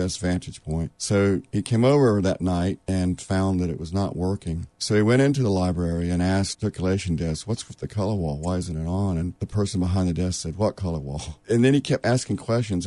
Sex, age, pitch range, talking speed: male, 50-69, 85-100 Hz, 240 wpm